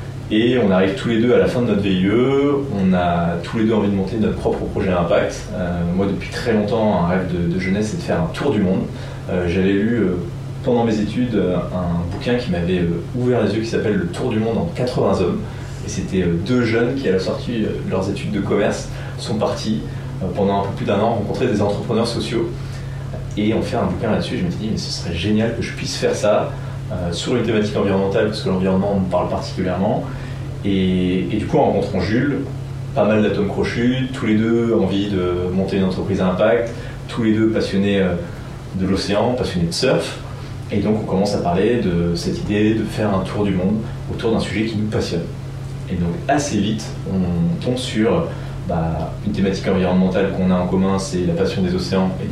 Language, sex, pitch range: French, male, 95-125 Hz